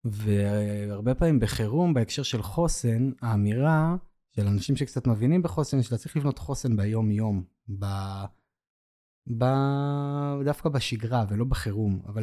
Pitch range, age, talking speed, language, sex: 110-145 Hz, 20-39, 120 wpm, Hebrew, male